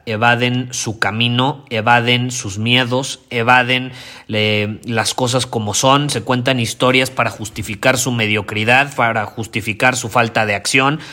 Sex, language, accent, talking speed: male, Spanish, Mexican, 130 wpm